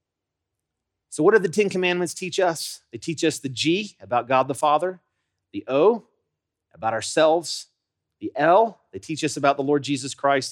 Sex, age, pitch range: male, 30-49, 120-165 Hz